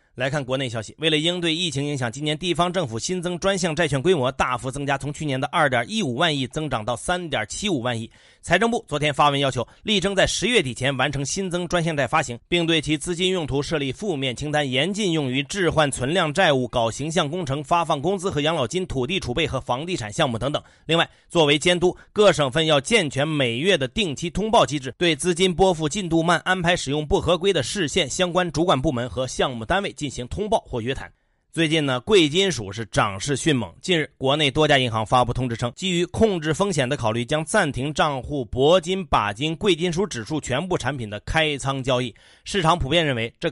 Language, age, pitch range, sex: Chinese, 30-49, 130-175 Hz, male